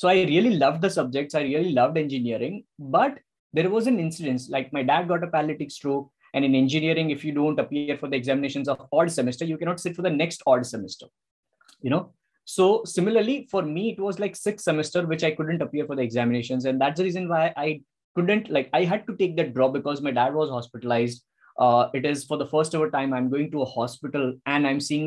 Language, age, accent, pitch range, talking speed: English, 20-39, Indian, 135-170 Hz, 230 wpm